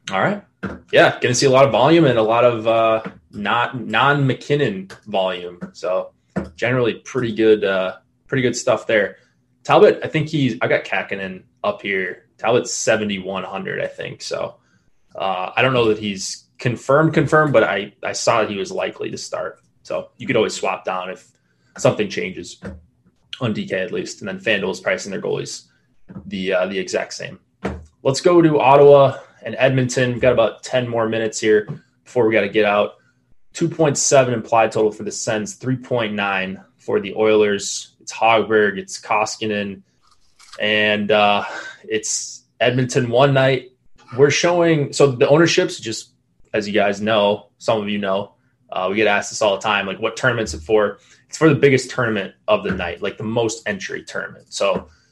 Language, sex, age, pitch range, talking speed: English, male, 20-39, 105-135 Hz, 180 wpm